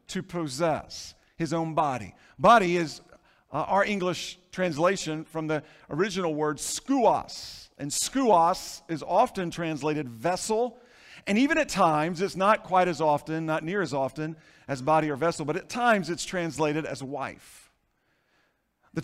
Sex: male